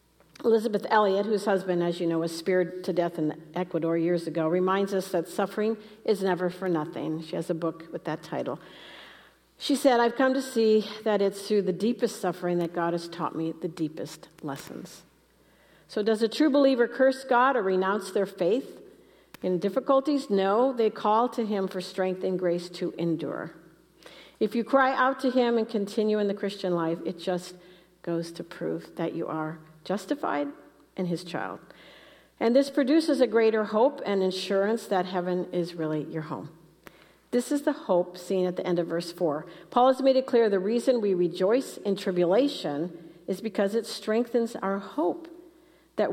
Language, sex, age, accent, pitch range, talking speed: English, female, 50-69, American, 170-225 Hz, 185 wpm